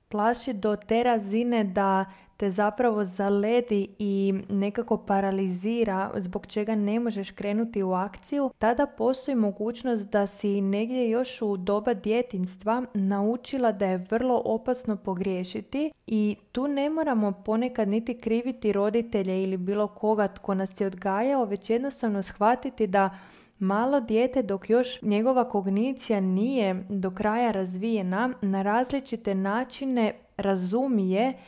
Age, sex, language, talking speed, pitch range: 20-39, female, Croatian, 130 wpm, 195-235 Hz